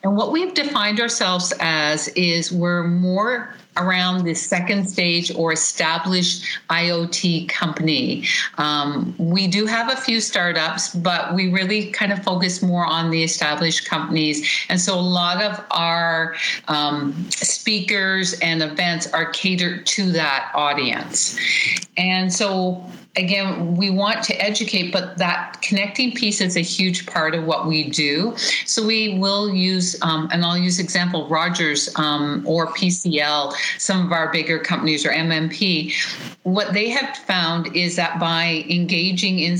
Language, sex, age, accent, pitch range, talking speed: English, female, 50-69, American, 160-190 Hz, 150 wpm